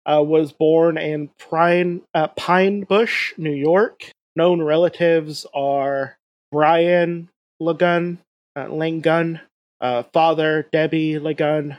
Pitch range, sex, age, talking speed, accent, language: 150-185 Hz, male, 30-49, 105 wpm, American, English